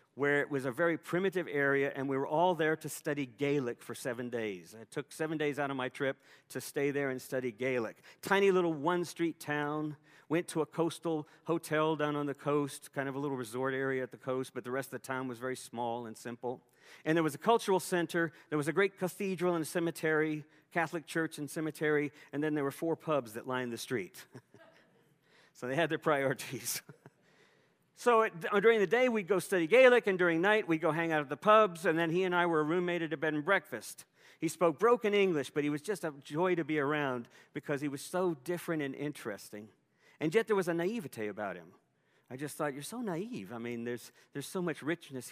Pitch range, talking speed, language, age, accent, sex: 135-170 Hz, 225 wpm, English, 50-69, American, male